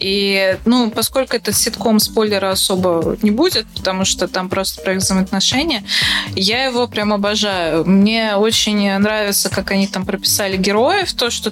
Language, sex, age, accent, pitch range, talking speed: Russian, female, 20-39, native, 195-235 Hz, 155 wpm